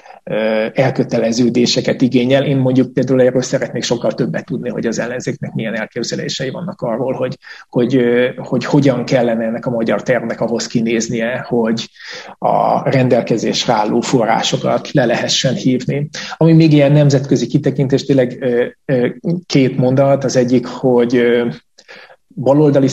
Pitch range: 120-140 Hz